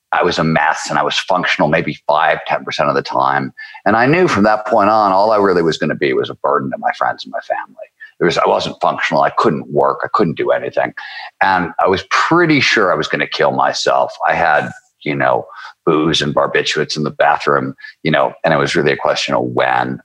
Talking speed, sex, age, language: 240 wpm, male, 50-69, English